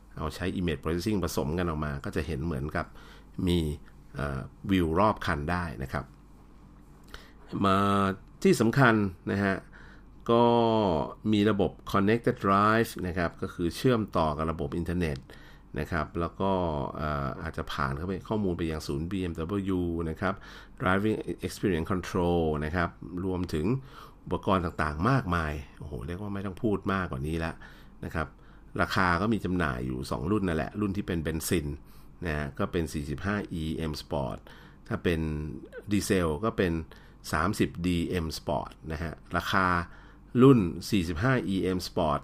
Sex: male